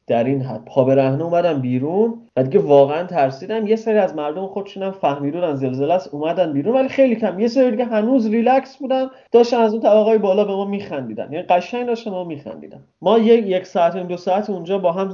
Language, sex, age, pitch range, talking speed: Persian, male, 30-49, 140-210 Hz, 220 wpm